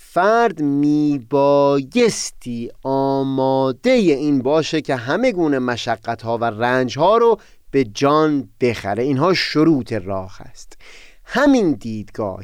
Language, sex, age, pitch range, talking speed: Persian, male, 30-49, 115-165 Hz, 100 wpm